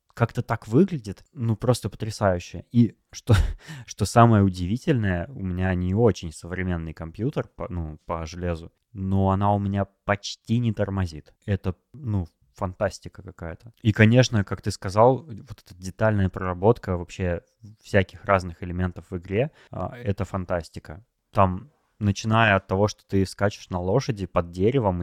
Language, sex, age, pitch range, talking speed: Russian, male, 20-39, 90-110 Hz, 140 wpm